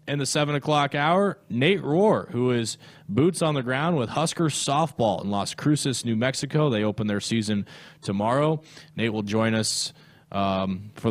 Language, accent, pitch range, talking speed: English, American, 105-145 Hz, 175 wpm